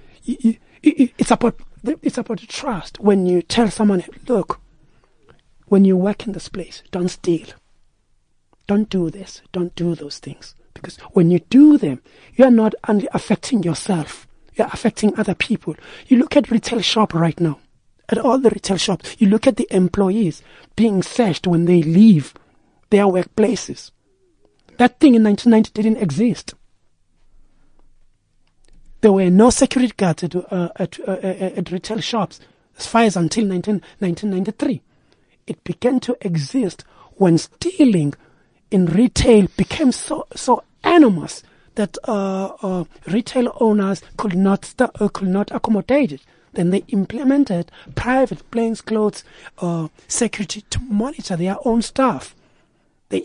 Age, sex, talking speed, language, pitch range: 60-79, male, 140 wpm, English, 180-235 Hz